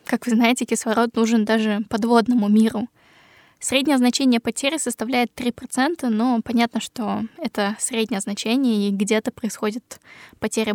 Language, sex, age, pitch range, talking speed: Russian, female, 10-29, 225-250 Hz, 130 wpm